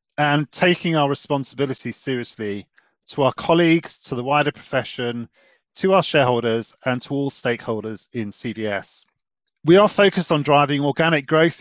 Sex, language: male, English